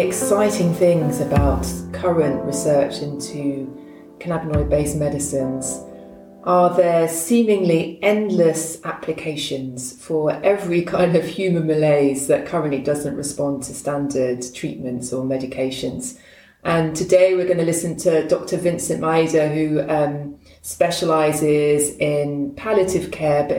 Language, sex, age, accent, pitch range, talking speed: English, female, 30-49, British, 145-175 Hz, 115 wpm